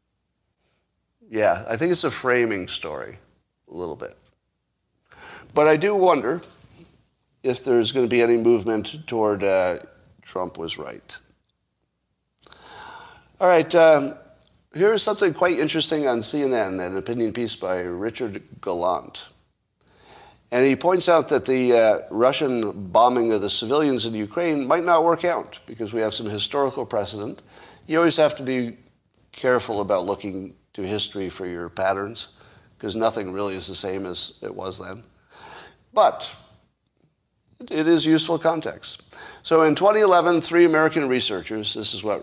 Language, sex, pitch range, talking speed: English, male, 105-155 Hz, 145 wpm